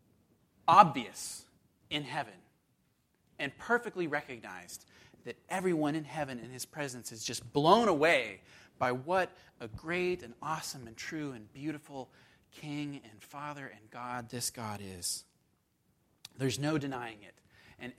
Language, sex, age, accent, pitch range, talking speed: English, male, 30-49, American, 125-160 Hz, 135 wpm